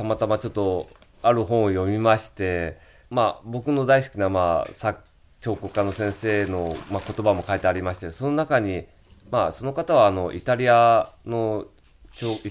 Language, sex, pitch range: Japanese, male, 95-135 Hz